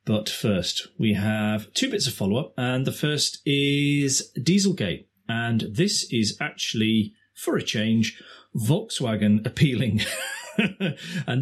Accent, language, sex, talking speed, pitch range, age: British, English, male, 125 wpm, 105-140 Hz, 30-49